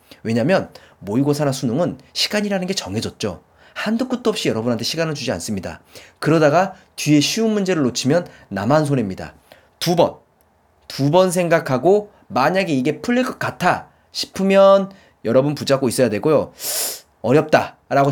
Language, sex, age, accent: Korean, male, 30-49, native